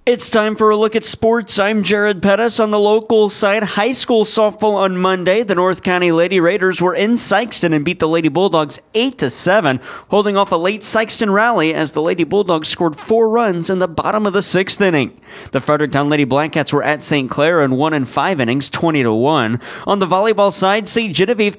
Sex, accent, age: male, American, 40-59